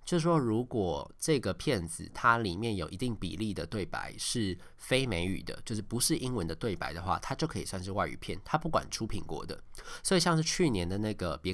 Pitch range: 90-120 Hz